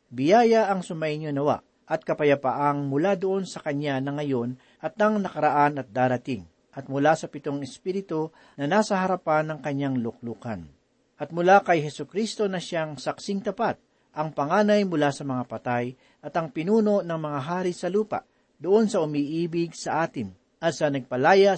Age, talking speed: 50-69, 160 wpm